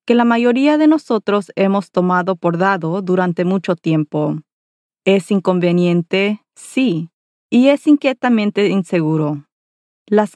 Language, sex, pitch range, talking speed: Spanish, female, 175-225 Hz, 115 wpm